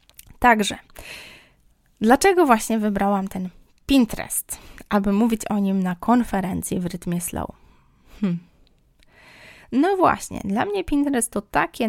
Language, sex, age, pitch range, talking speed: Polish, female, 20-39, 185-220 Hz, 110 wpm